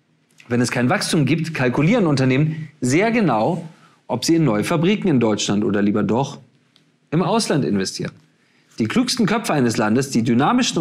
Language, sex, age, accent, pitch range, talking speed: German, male, 40-59, German, 115-160 Hz, 160 wpm